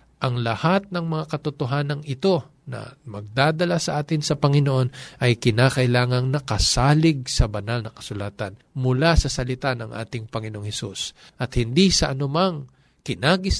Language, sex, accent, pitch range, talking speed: Filipino, male, native, 130-165 Hz, 135 wpm